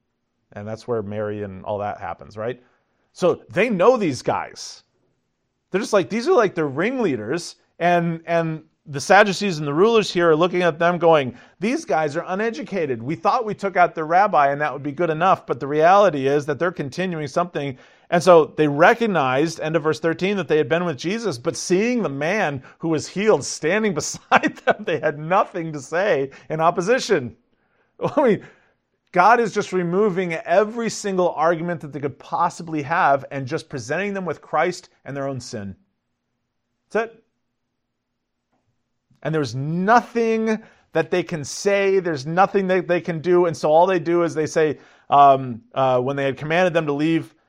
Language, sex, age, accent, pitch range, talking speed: English, male, 40-59, American, 140-185 Hz, 185 wpm